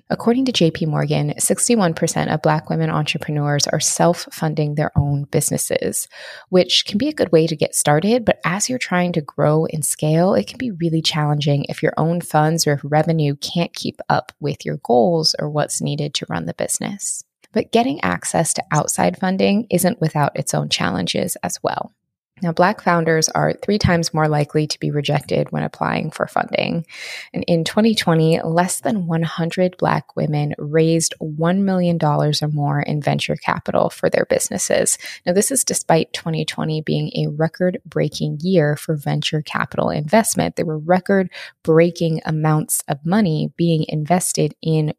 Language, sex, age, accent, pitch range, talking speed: English, female, 20-39, American, 150-180 Hz, 165 wpm